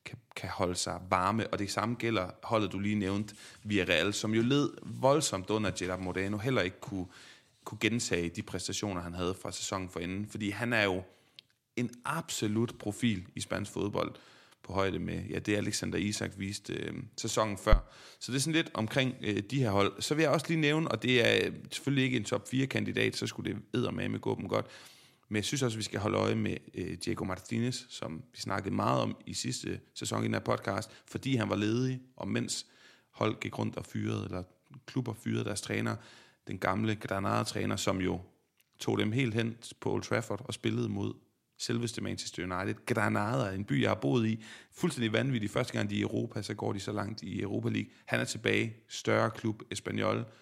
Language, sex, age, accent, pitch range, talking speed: Danish, male, 30-49, native, 100-120 Hz, 205 wpm